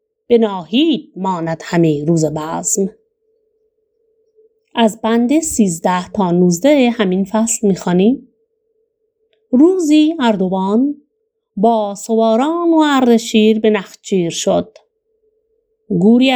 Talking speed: 85 wpm